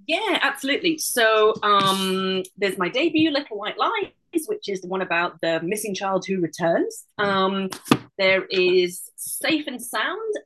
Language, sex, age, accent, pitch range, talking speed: English, female, 30-49, British, 175-215 Hz, 150 wpm